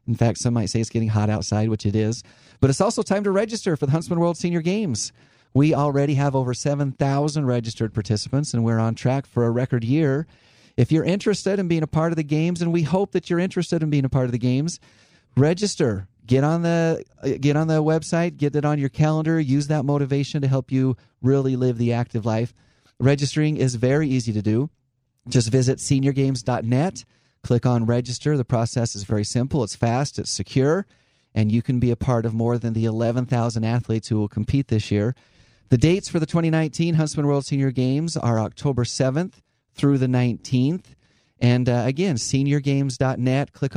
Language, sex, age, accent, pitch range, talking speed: English, male, 40-59, American, 120-150 Hz, 195 wpm